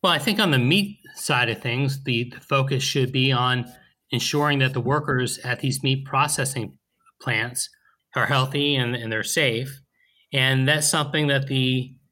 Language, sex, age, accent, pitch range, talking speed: English, male, 30-49, American, 125-145 Hz, 175 wpm